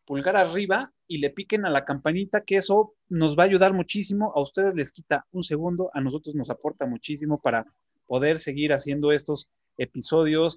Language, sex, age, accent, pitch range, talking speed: Spanish, male, 30-49, Mexican, 135-185 Hz, 180 wpm